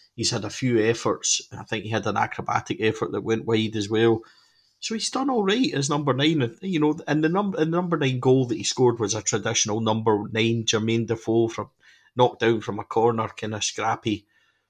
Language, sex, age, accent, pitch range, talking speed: English, male, 30-49, British, 105-125 Hz, 225 wpm